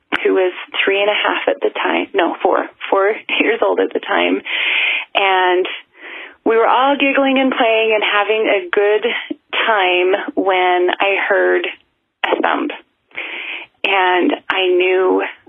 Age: 30-49